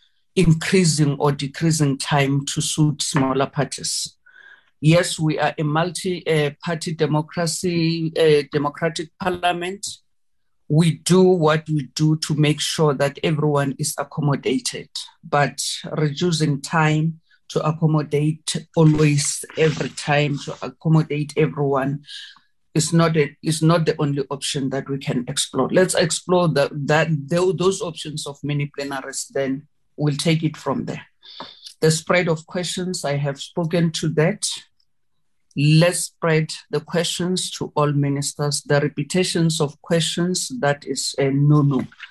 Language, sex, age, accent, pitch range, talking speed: English, female, 50-69, South African, 145-170 Hz, 130 wpm